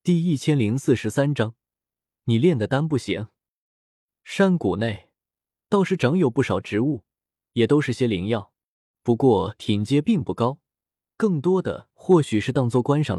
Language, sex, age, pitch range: Chinese, male, 20-39, 105-155 Hz